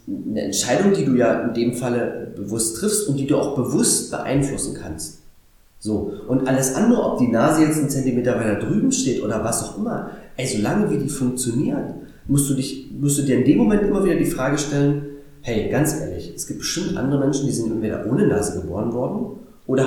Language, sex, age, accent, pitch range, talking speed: German, male, 30-49, German, 115-155 Hz, 210 wpm